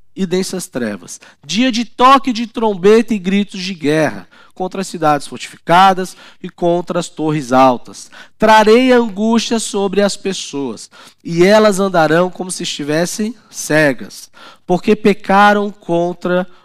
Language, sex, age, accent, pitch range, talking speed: Portuguese, male, 20-39, Brazilian, 145-210 Hz, 130 wpm